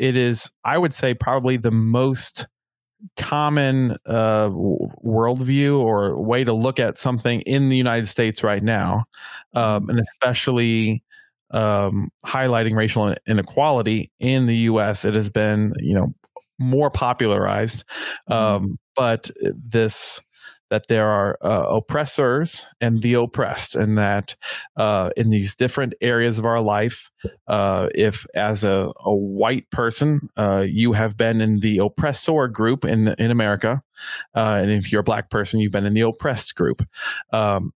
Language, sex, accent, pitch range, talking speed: English, male, American, 110-130 Hz, 150 wpm